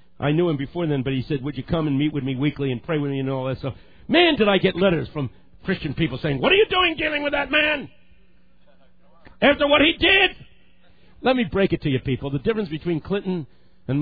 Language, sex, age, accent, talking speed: English, male, 50-69, American, 245 wpm